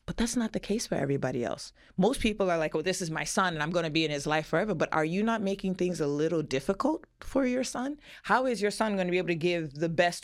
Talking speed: 280 wpm